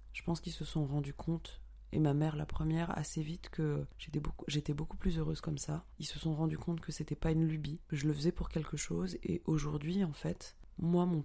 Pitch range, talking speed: 145-165 Hz, 240 wpm